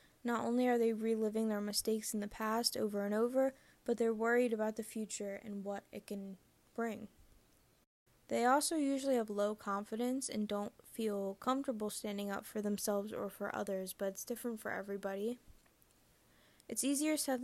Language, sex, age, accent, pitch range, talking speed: English, female, 10-29, American, 205-235 Hz, 170 wpm